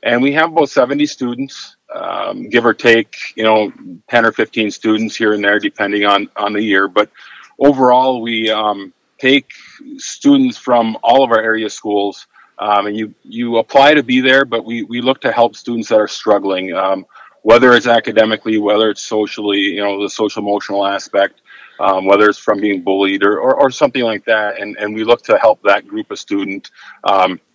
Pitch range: 100-120 Hz